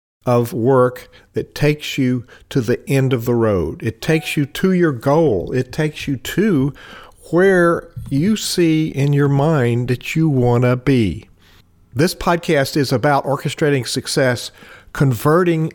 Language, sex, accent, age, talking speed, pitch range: English, male, American, 50-69, 150 wpm, 120-145 Hz